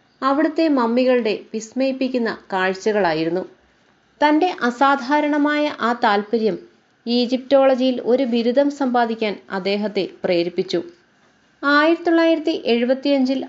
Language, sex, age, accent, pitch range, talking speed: Malayalam, female, 30-49, native, 225-280 Hz, 65 wpm